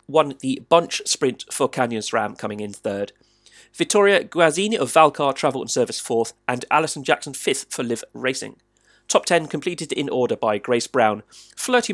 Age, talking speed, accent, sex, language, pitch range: 40-59, 170 wpm, British, male, English, 125-170 Hz